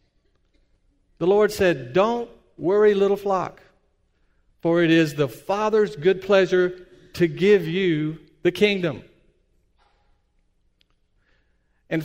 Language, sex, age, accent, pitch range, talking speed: English, male, 50-69, American, 150-220 Hz, 100 wpm